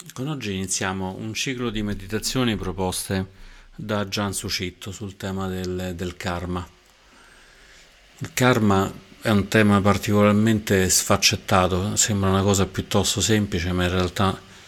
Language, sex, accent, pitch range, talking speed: Italian, male, native, 90-105 Hz, 125 wpm